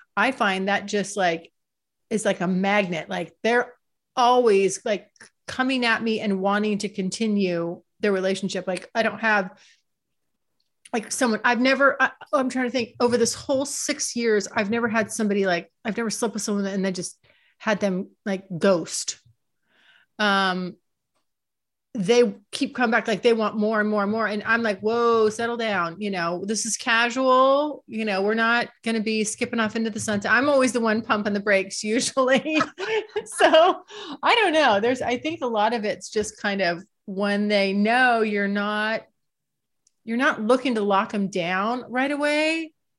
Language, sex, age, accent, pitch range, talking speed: English, female, 30-49, American, 200-245 Hz, 175 wpm